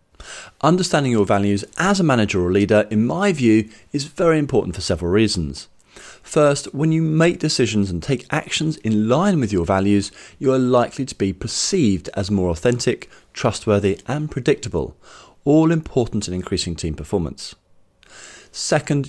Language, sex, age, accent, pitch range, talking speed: English, male, 30-49, British, 95-135 Hz, 155 wpm